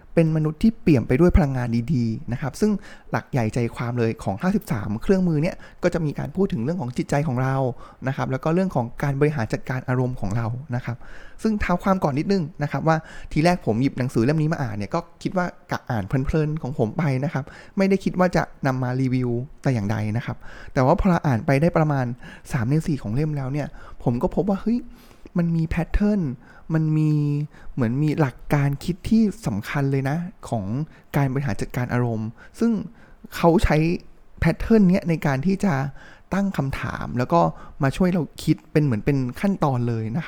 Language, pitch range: Thai, 125-170 Hz